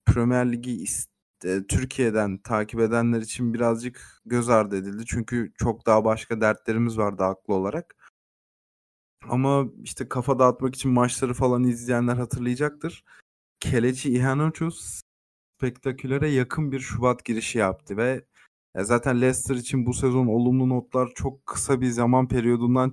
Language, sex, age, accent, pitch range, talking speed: Turkish, male, 30-49, native, 115-135 Hz, 125 wpm